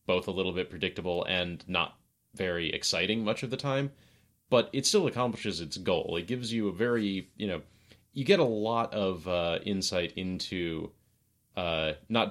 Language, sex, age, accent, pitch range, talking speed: English, male, 30-49, American, 80-105 Hz, 175 wpm